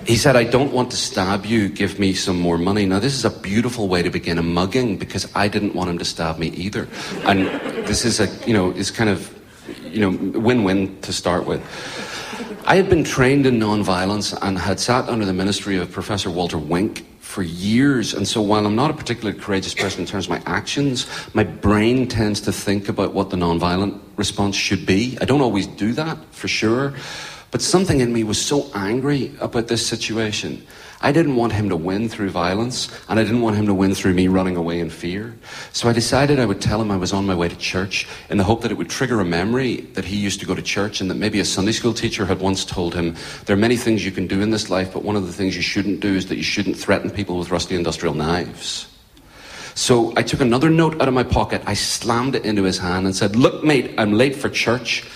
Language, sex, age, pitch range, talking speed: English, male, 40-59, 95-115 Hz, 240 wpm